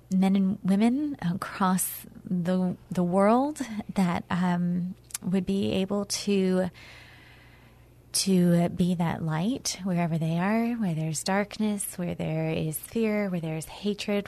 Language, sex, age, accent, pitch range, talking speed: English, female, 20-39, American, 170-195 Hz, 125 wpm